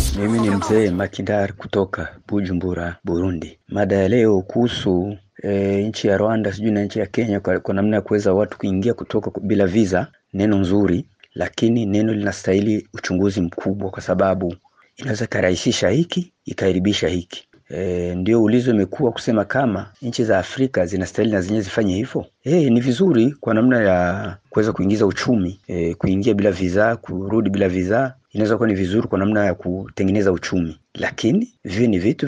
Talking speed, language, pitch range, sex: 160 wpm, Swahili, 95-120 Hz, male